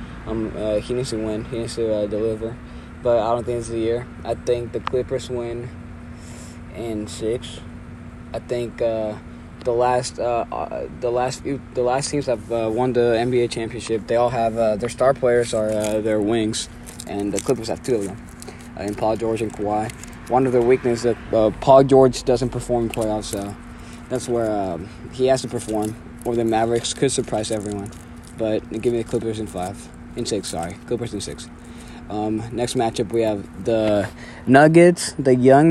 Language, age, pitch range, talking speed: English, 20-39, 105-125 Hz, 200 wpm